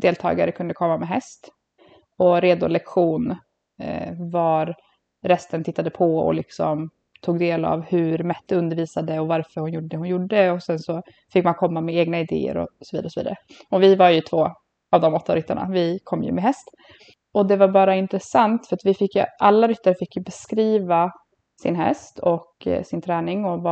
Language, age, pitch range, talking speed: English, 20-39, 175-200 Hz, 185 wpm